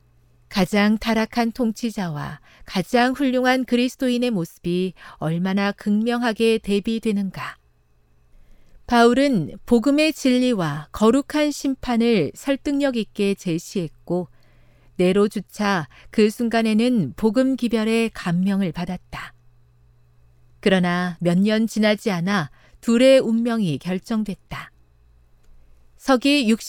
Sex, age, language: female, 40-59, Korean